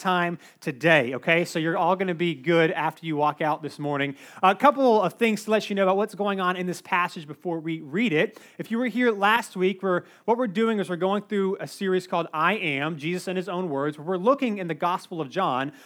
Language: English